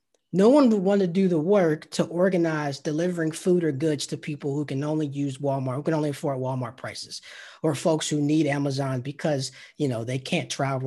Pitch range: 130-175 Hz